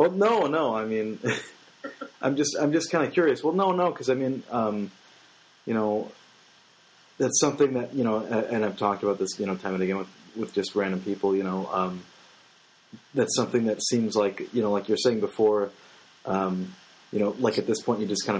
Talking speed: 215 wpm